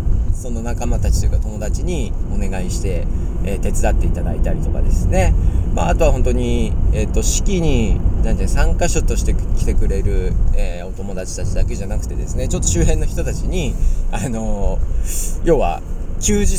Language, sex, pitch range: Japanese, male, 85-105 Hz